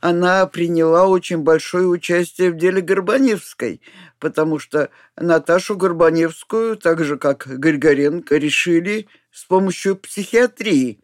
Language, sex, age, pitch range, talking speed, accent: Russian, male, 50-69, 160-215 Hz, 110 wpm, native